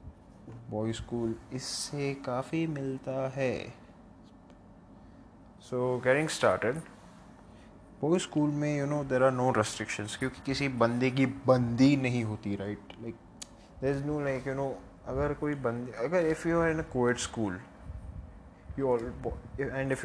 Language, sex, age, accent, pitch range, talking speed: Hindi, male, 20-39, native, 115-160 Hz, 125 wpm